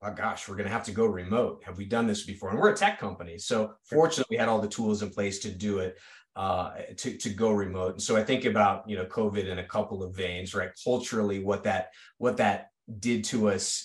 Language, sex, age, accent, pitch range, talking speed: English, male, 30-49, American, 100-115 Hz, 250 wpm